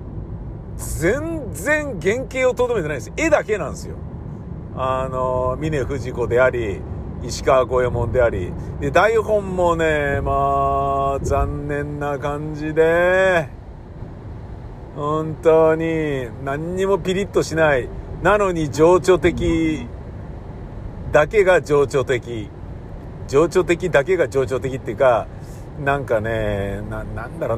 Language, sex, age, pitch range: Japanese, male, 50-69, 115-160 Hz